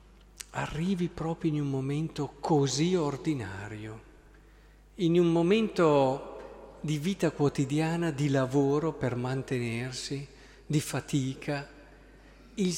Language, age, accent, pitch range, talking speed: Italian, 50-69, native, 135-190 Hz, 95 wpm